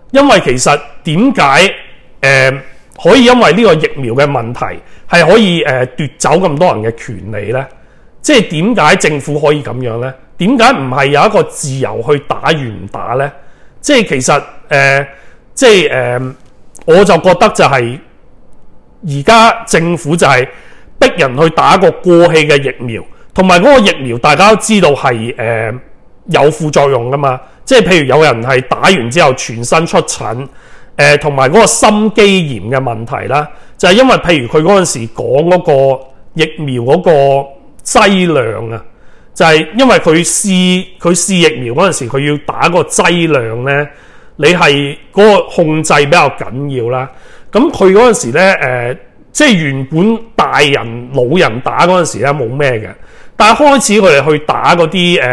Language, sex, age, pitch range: Chinese, male, 40-59, 130-180 Hz